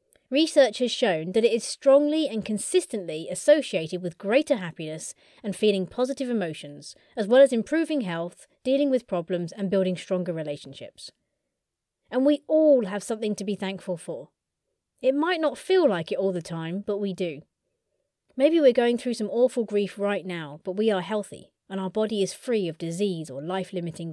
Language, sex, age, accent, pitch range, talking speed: English, female, 30-49, British, 180-245 Hz, 180 wpm